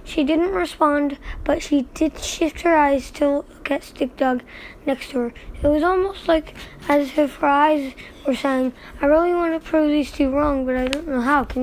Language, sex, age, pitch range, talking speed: English, female, 20-39, 270-315 Hz, 210 wpm